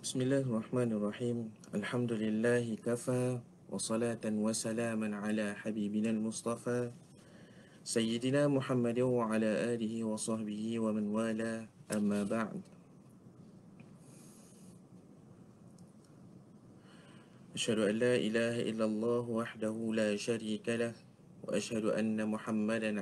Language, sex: English, male